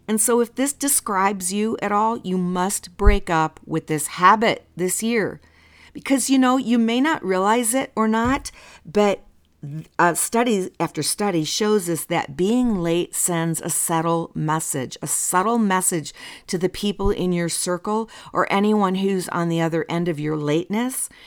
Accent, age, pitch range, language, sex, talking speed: American, 50-69, 170-225 Hz, English, female, 170 wpm